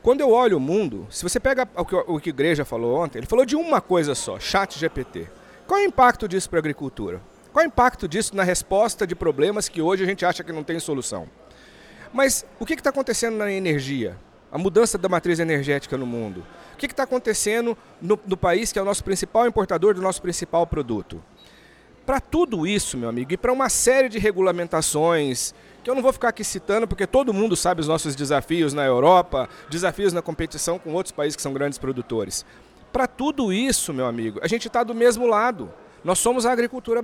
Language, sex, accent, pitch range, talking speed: Portuguese, male, Brazilian, 165-235 Hz, 210 wpm